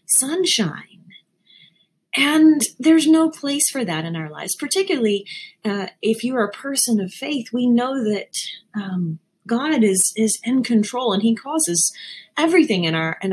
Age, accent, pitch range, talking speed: 30-49, American, 185-245 Hz, 155 wpm